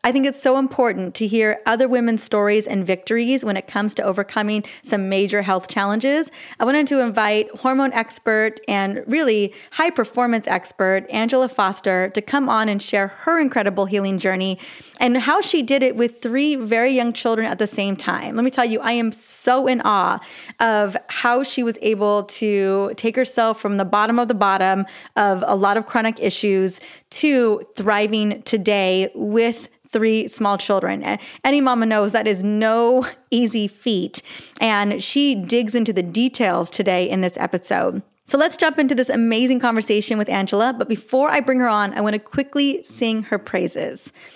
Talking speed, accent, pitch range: 180 wpm, American, 205-255 Hz